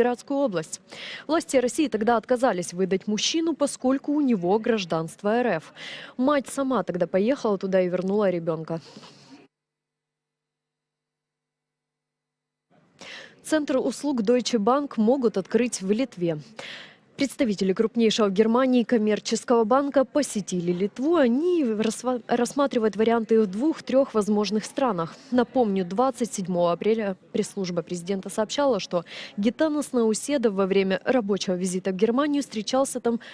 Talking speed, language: 110 wpm, Russian